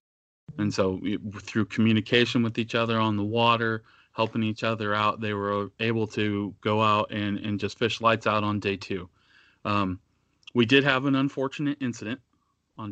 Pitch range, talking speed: 100-115 Hz, 170 wpm